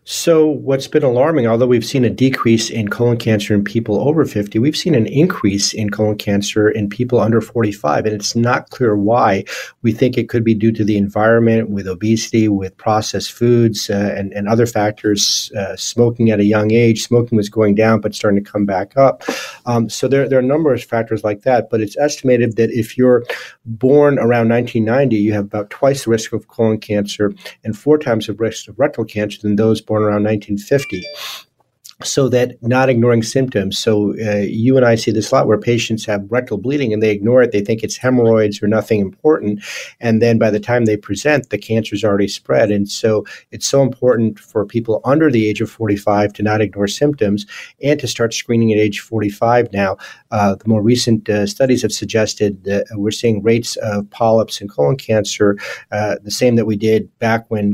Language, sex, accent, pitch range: English, male, American, 105-120 Hz